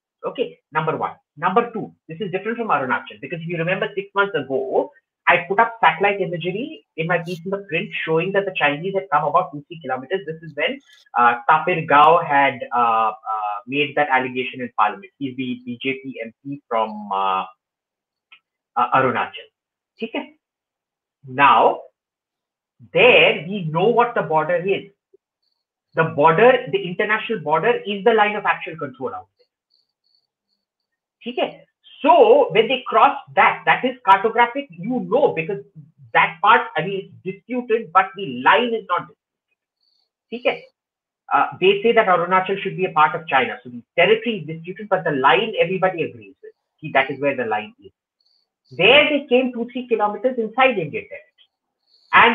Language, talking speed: Hindi, 165 wpm